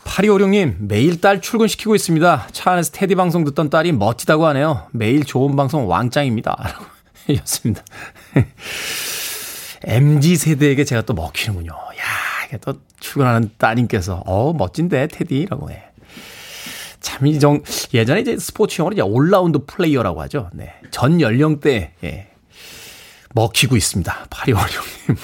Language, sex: Korean, male